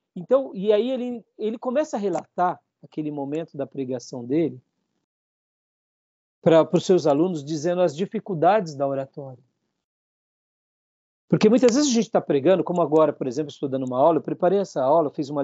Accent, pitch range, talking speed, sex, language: Brazilian, 150-220 Hz, 165 wpm, male, Portuguese